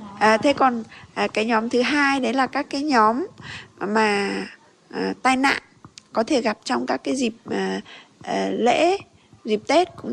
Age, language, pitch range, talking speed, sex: 20-39, Vietnamese, 200-255 Hz, 180 wpm, female